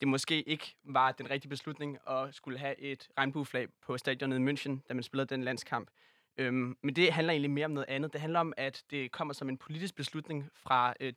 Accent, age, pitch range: native, 20-39, 130-150 Hz